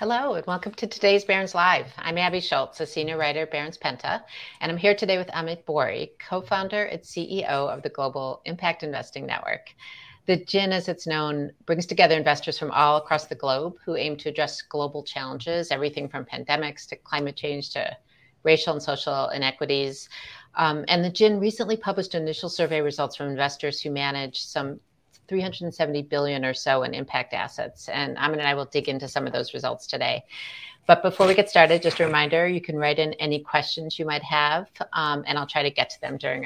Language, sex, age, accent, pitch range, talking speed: English, female, 50-69, American, 145-170 Hz, 200 wpm